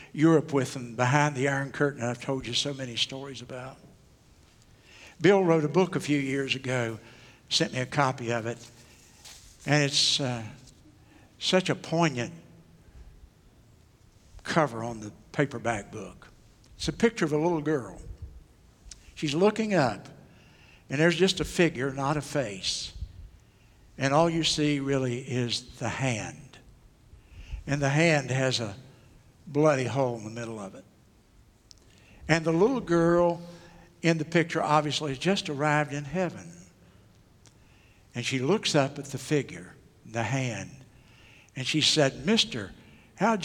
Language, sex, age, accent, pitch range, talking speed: English, male, 60-79, American, 115-155 Hz, 140 wpm